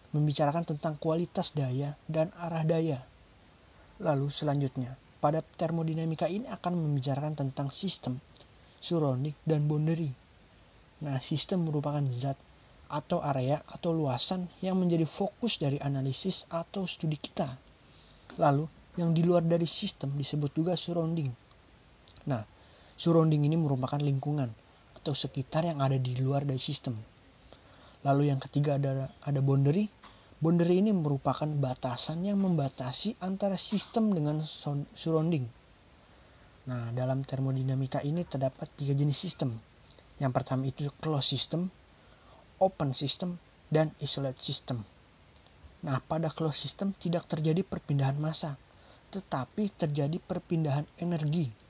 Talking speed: 120 wpm